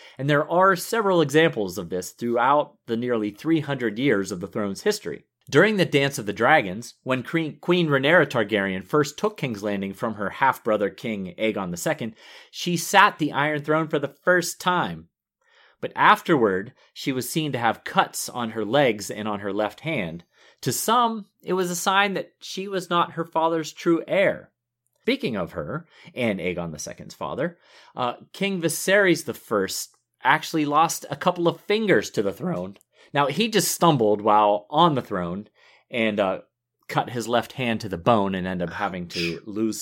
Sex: male